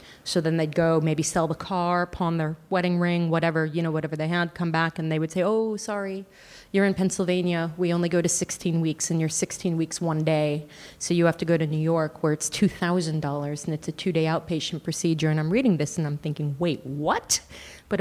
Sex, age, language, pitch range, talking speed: female, 30-49, English, 155-190 Hz, 225 wpm